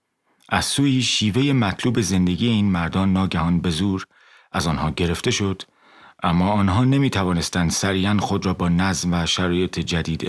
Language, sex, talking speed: Persian, male, 145 wpm